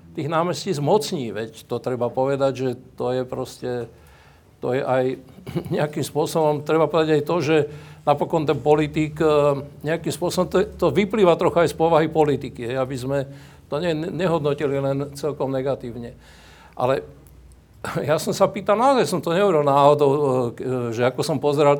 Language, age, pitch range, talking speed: Slovak, 60-79, 135-170 Hz, 155 wpm